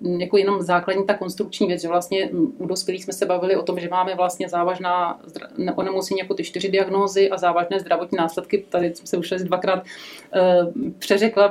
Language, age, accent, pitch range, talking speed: Czech, 30-49, native, 180-200 Hz, 175 wpm